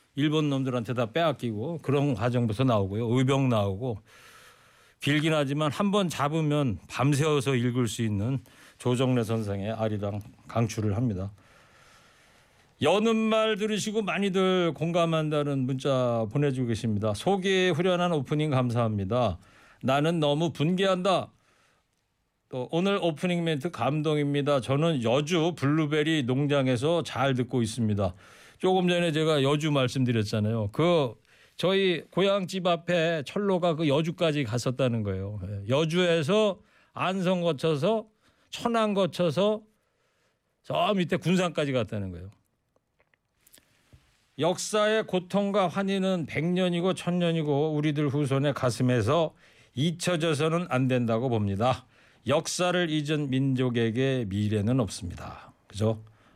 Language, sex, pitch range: Korean, male, 120-175 Hz